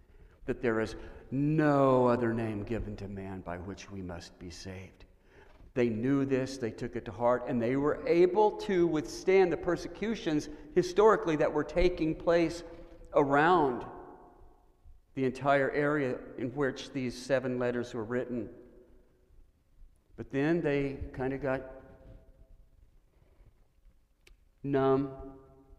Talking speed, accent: 125 wpm, American